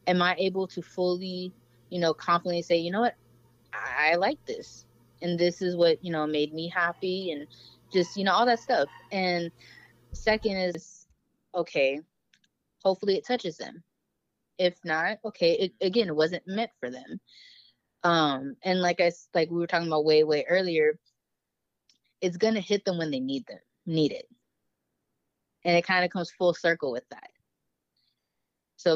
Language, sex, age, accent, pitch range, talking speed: English, female, 20-39, American, 165-195 Hz, 170 wpm